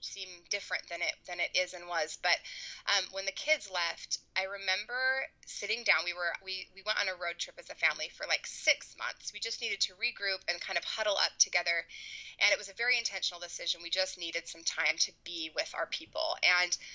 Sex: female